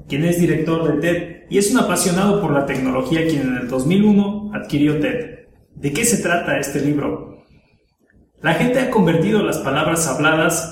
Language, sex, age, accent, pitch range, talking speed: Spanish, male, 30-49, Mexican, 140-170 Hz, 175 wpm